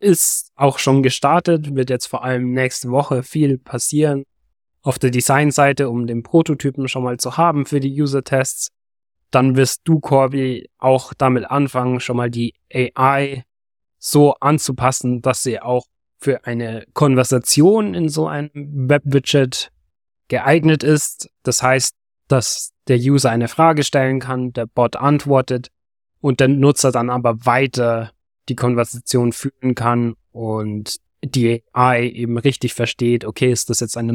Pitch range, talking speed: 115-135 Hz, 145 wpm